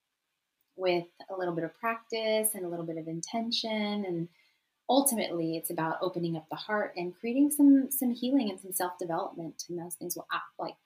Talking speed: 190 wpm